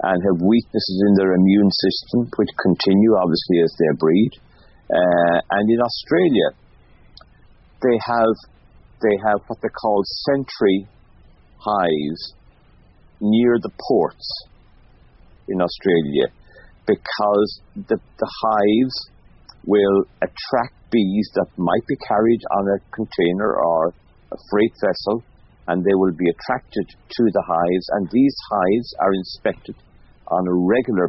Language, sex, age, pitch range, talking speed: English, male, 50-69, 90-110 Hz, 125 wpm